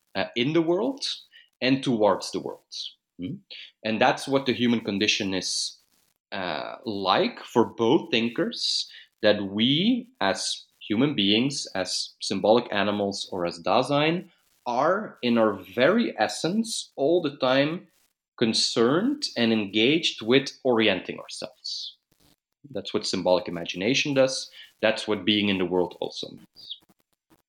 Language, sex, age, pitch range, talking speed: English, male, 30-49, 100-135 Hz, 130 wpm